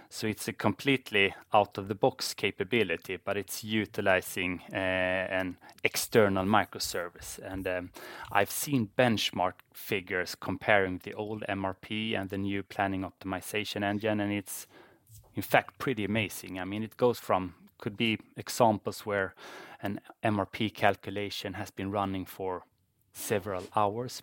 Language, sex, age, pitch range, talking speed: English, male, 20-39, 95-115 Hz, 130 wpm